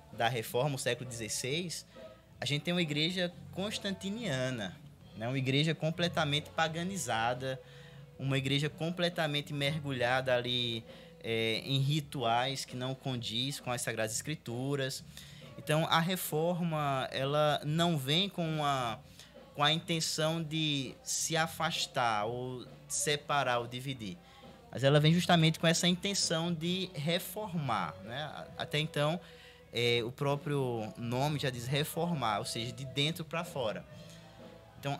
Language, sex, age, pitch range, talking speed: Portuguese, male, 20-39, 125-160 Hz, 130 wpm